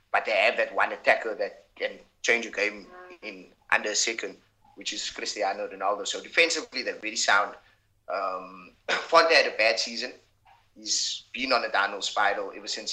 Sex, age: male, 20-39